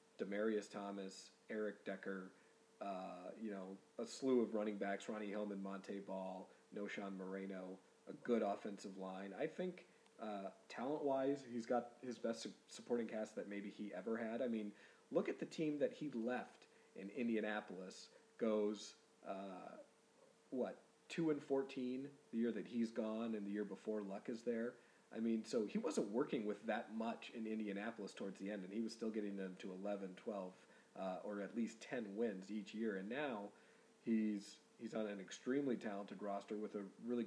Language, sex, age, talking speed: English, male, 40-59, 175 wpm